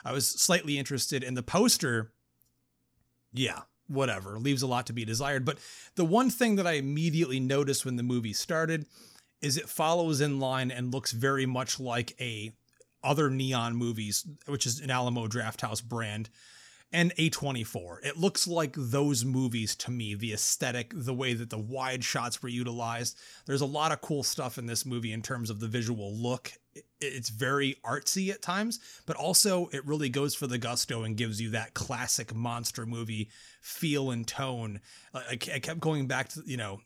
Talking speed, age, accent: 180 wpm, 30-49, American